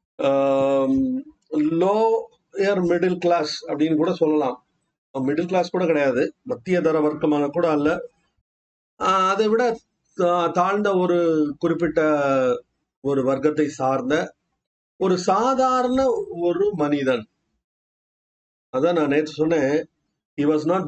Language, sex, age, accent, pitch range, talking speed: Tamil, male, 30-49, native, 155-215 Hz, 95 wpm